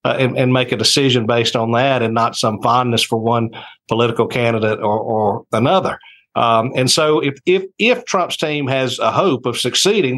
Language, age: English, 50-69